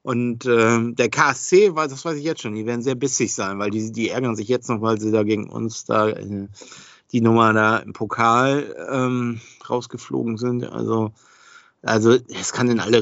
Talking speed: 190 wpm